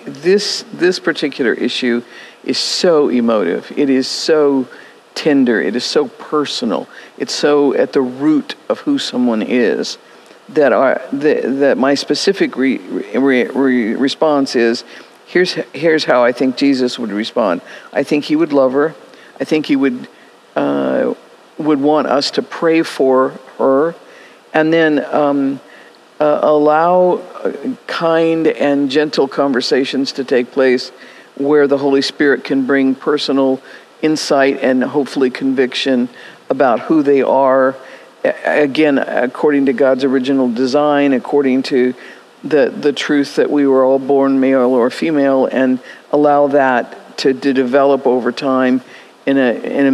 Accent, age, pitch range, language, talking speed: American, 50-69, 130-150 Hz, English, 145 wpm